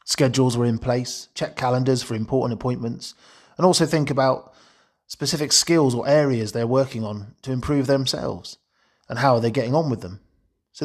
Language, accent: English, British